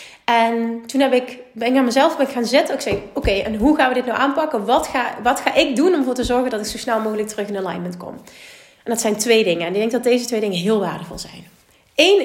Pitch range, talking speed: 210-265 Hz, 275 wpm